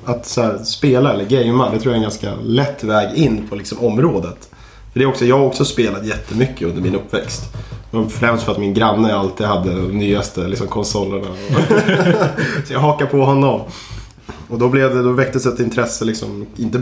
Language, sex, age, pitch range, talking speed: Swedish, male, 20-39, 100-120 Hz, 195 wpm